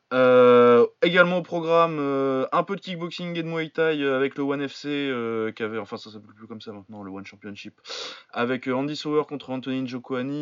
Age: 20-39